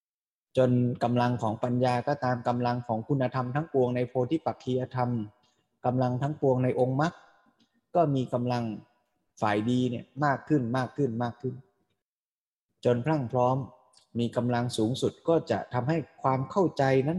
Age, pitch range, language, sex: 20-39, 120-150 Hz, Thai, male